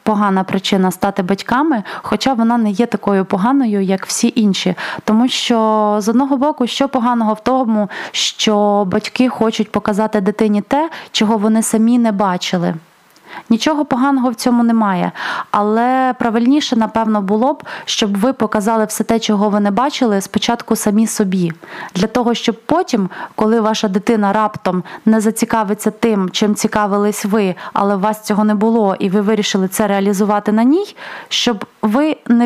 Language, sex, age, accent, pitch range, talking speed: Ukrainian, female, 20-39, native, 200-230 Hz, 155 wpm